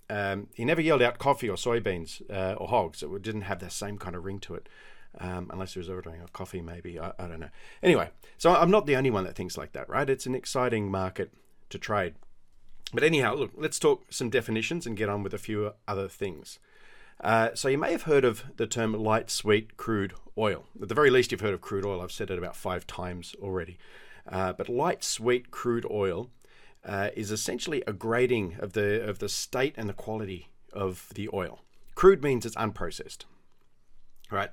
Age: 40-59